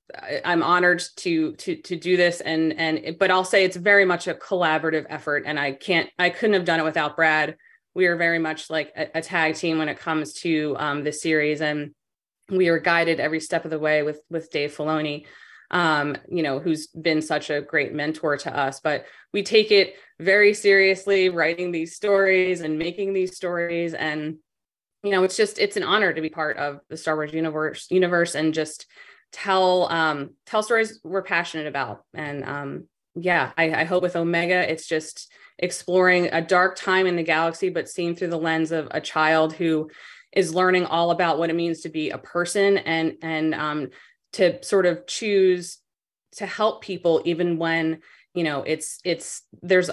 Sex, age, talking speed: female, 20-39, 195 wpm